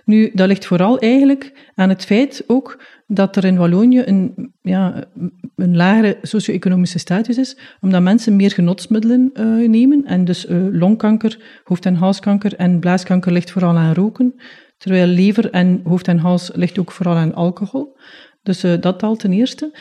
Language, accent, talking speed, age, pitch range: Dutch, Dutch, 165 wpm, 40-59, 180-220 Hz